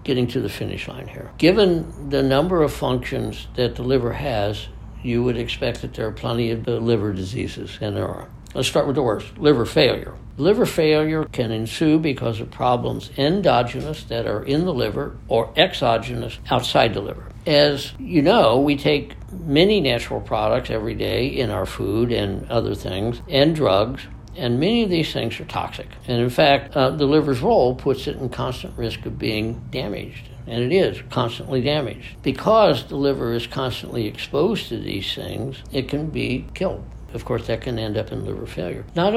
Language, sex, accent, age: English, male, American, 60-79